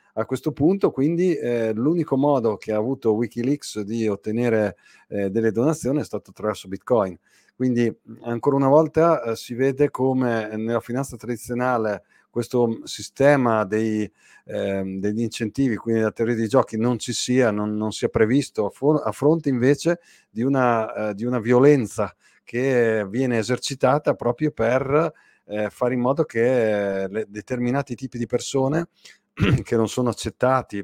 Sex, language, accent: male, Italian, native